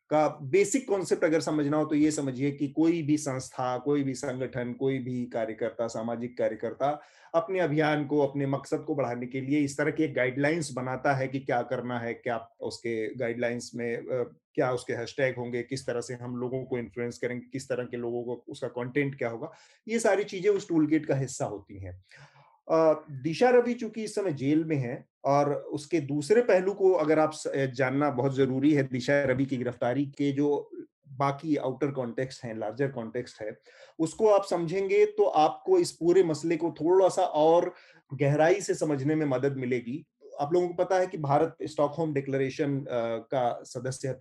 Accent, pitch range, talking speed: native, 125-155 Hz, 185 wpm